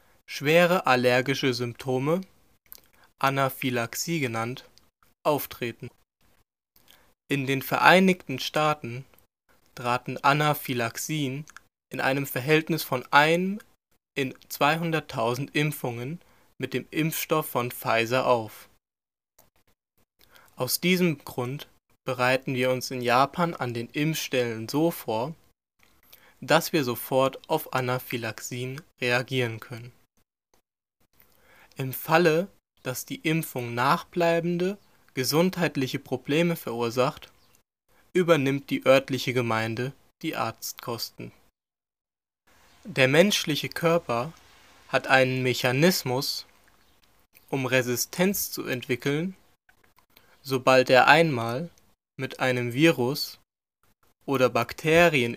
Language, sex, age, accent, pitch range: Japanese, male, 20-39, German, 125-160 Hz